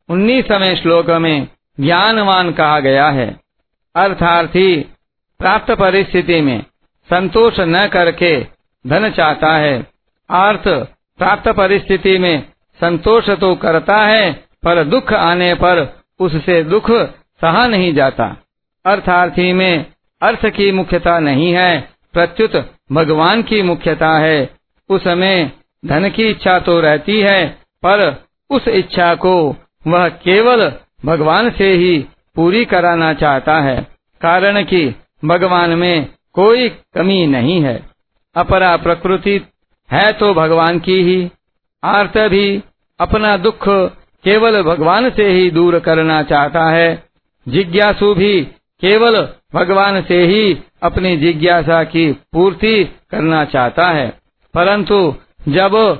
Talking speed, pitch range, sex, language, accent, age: 115 wpm, 165-200 Hz, male, Hindi, native, 50-69